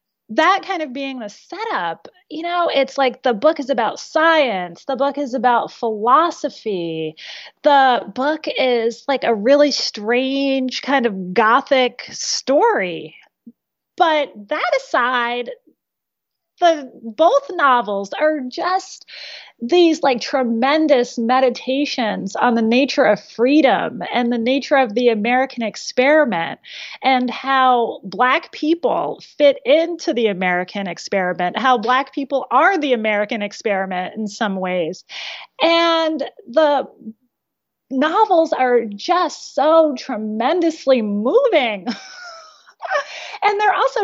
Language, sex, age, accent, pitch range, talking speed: English, female, 30-49, American, 235-320 Hz, 115 wpm